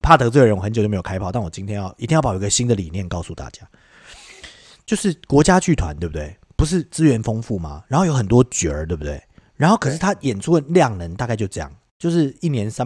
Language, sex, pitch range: Chinese, male, 95-140 Hz